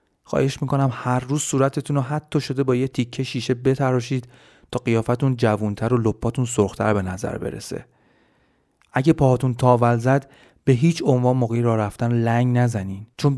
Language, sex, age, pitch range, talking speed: Persian, male, 30-49, 110-130 Hz, 150 wpm